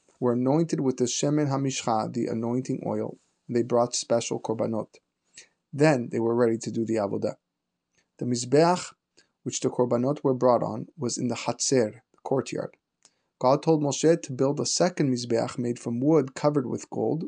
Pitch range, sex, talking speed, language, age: 120-150 Hz, male, 175 wpm, English, 20-39